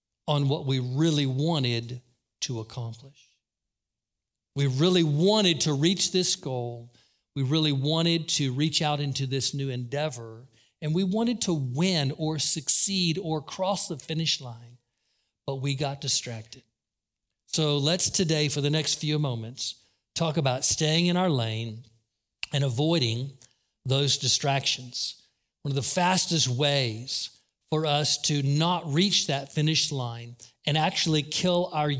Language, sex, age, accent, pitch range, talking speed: English, male, 50-69, American, 125-165 Hz, 140 wpm